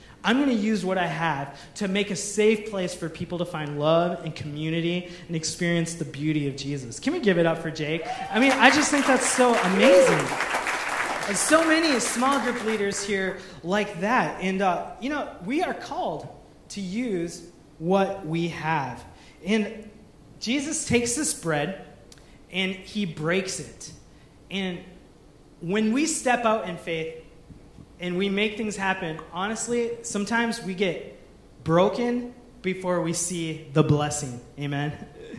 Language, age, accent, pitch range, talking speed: English, 30-49, American, 160-220 Hz, 155 wpm